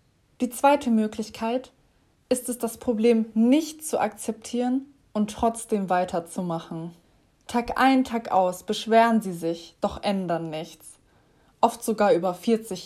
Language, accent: German, German